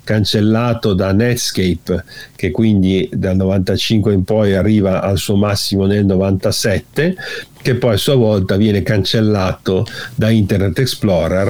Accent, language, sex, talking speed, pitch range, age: native, Italian, male, 130 wpm, 95-120 Hz, 50-69